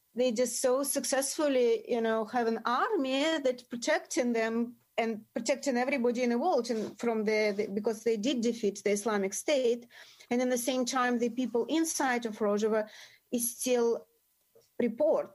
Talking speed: 160 wpm